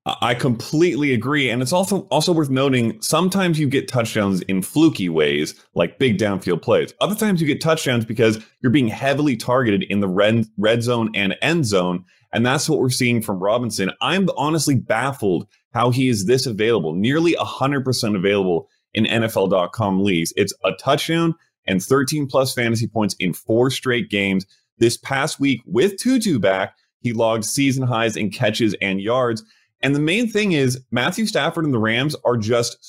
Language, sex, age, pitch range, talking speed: English, male, 30-49, 105-135 Hz, 180 wpm